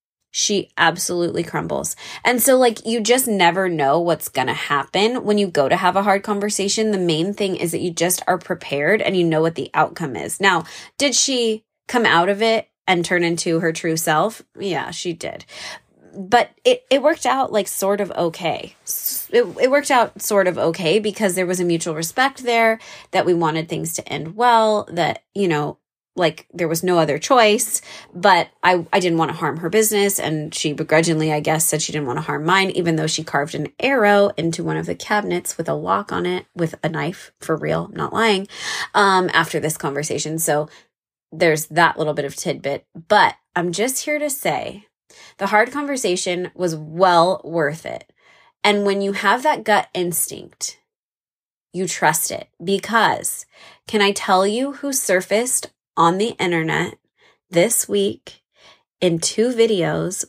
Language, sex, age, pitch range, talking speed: English, female, 20-39, 165-210 Hz, 185 wpm